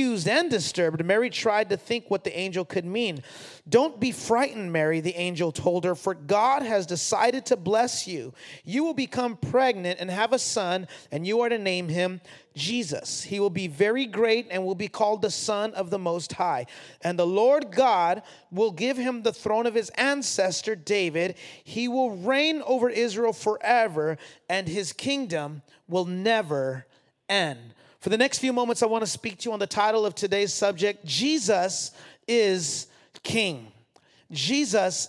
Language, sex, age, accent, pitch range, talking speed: English, male, 30-49, American, 180-225 Hz, 175 wpm